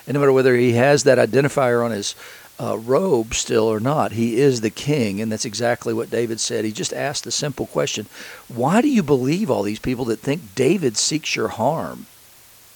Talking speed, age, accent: 200 wpm, 50-69, American